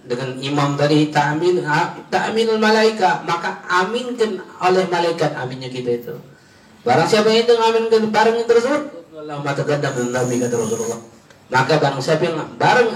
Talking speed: 145 wpm